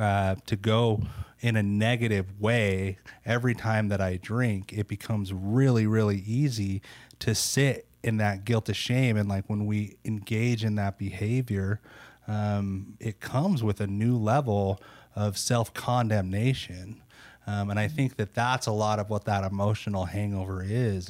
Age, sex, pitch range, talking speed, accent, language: 30-49, male, 100-115 Hz, 155 wpm, American, English